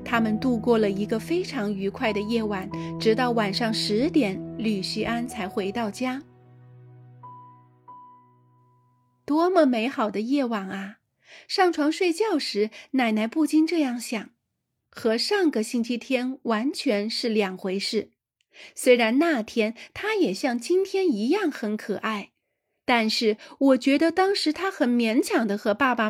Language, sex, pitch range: Chinese, female, 205-280 Hz